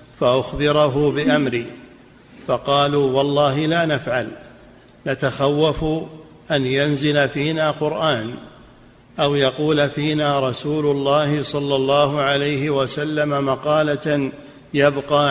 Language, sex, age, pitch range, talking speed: Arabic, male, 50-69, 140-150 Hz, 85 wpm